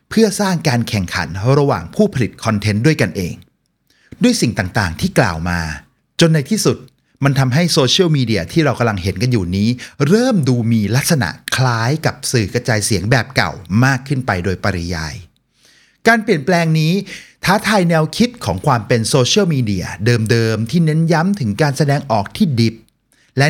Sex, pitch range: male, 110-160 Hz